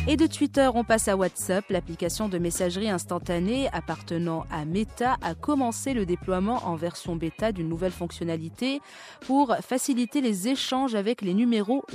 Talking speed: 155 wpm